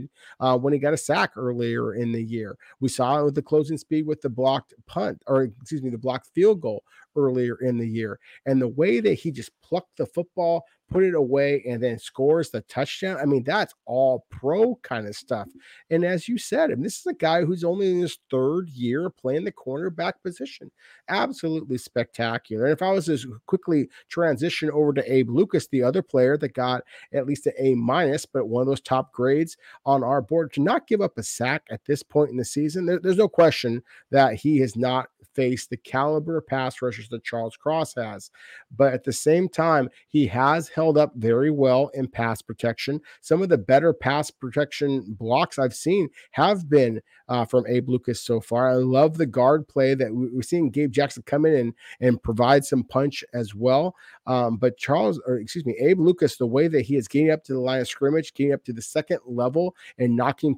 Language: English